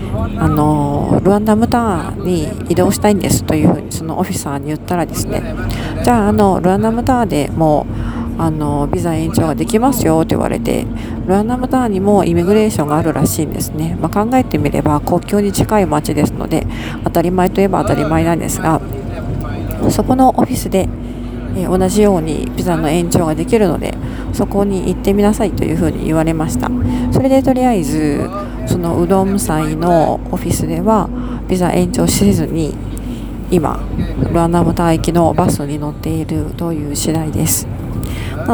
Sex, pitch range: female, 120-190 Hz